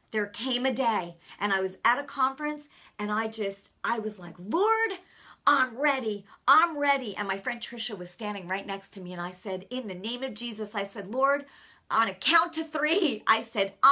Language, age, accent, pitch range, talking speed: English, 40-59, American, 200-270 Hz, 210 wpm